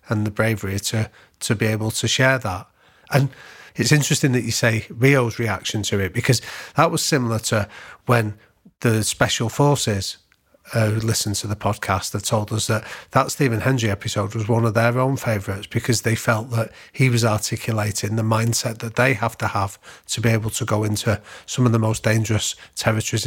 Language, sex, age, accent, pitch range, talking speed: English, male, 40-59, British, 105-125 Hz, 190 wpm